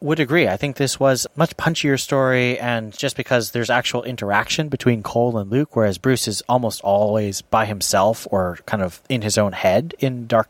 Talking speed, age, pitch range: 205 wpm, 30-49, 100-125 Hz